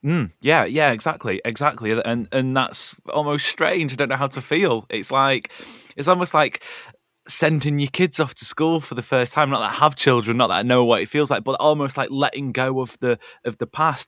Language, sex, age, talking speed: English, male, 20-39, 230 wpm